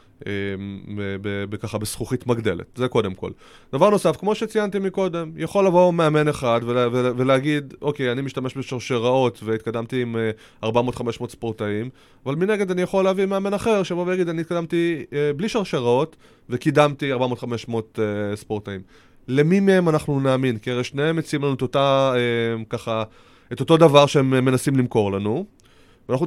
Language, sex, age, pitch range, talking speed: Hebrew, male, 20-39, 110-150 Hz, 160 wpm